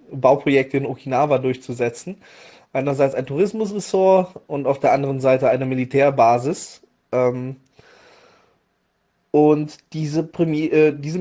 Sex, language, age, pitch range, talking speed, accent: male, German, 20-39, 130-160 Hz, 100 wpm, German